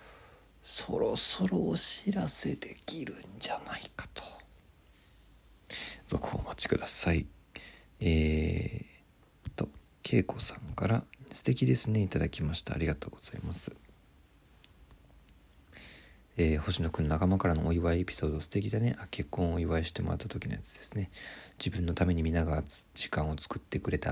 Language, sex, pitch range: Japanese, male, 80-100 Hz